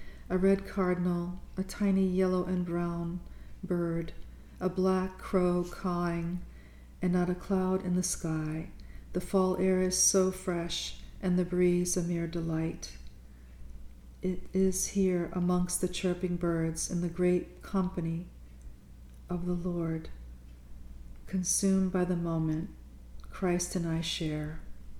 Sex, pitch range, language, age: female, 155-185 Hz, English, 40-59